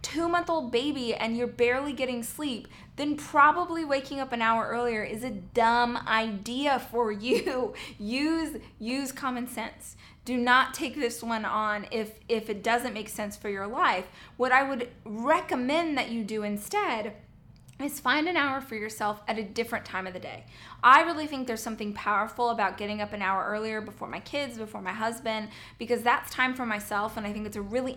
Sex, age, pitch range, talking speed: female, 20-39, 210-255 Hz, 190 wpm